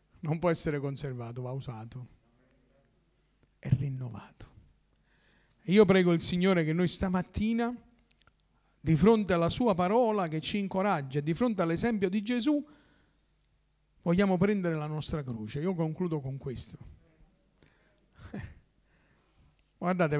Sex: male